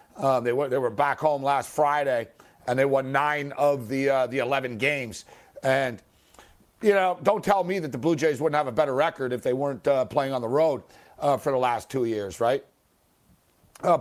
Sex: male